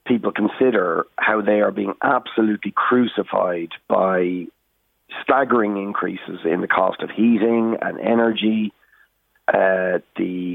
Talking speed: 115 wpm